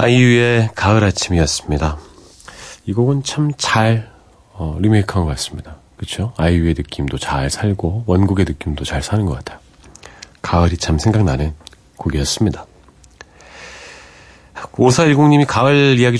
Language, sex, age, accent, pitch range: Korean, male, 40-59, native, 80-110 Hz